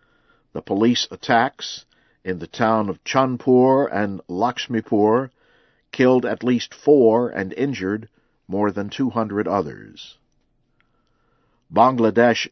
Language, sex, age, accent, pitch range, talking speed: English, male, 50-69, American, 100-130 Hz, 105 wpm